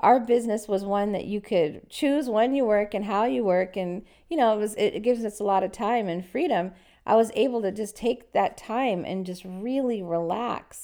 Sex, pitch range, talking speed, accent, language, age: female, 175-240 Hz, 235 wpm, American, English, 40-59